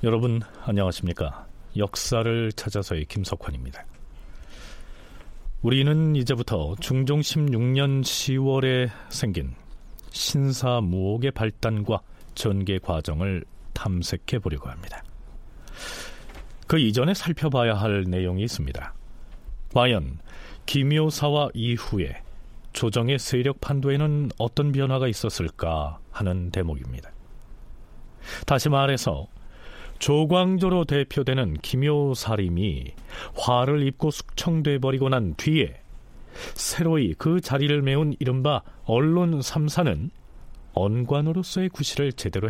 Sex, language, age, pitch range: male, Korean, 40-59, 95-145 Hz